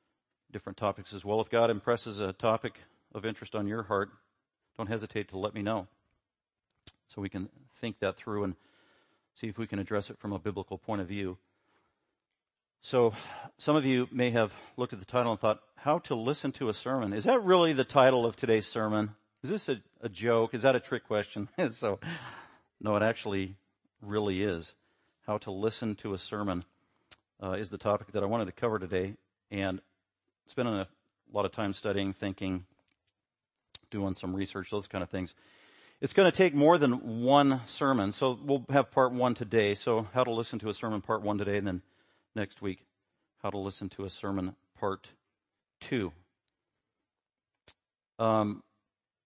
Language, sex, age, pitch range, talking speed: English, male, 50-69, 100-125 Hz, 180 wpm